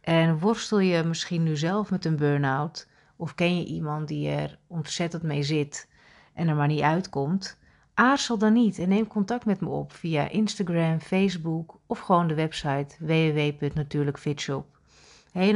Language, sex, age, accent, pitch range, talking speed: Dutch, female, 40-59, Dutch, 145-180 Hz, 160 wpm